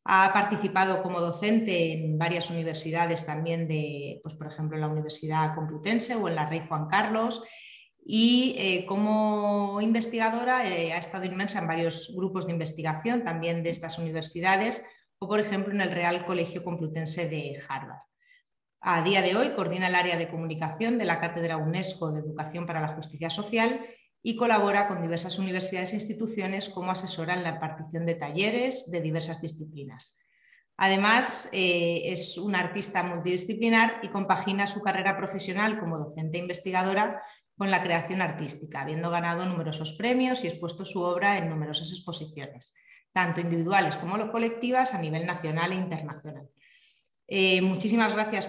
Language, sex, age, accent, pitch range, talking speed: Spanish, female, 30-49, Spanish, 165-205 Hz, 155 wpm